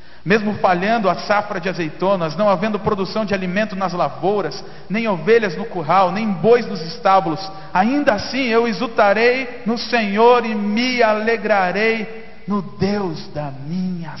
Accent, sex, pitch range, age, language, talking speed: Brazilian, male, 170-235 Hz, 50-69, Portuguese, 145 wpm